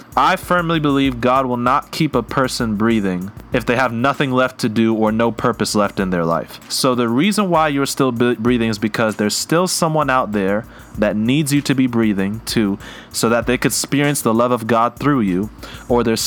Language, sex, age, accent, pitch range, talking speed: English, male, 30-49, American, 110-140 Hz, 215 wpm